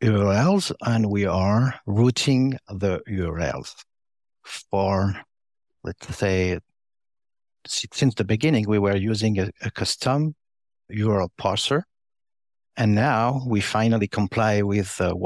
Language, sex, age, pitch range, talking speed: English, male, 50-69, 95-115 Hz, 115 wpm